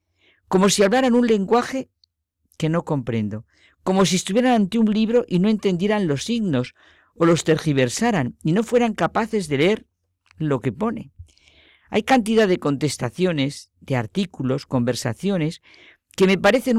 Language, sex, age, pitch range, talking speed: Spanish, female, 50-69, 130-200 Hz, 145 wpm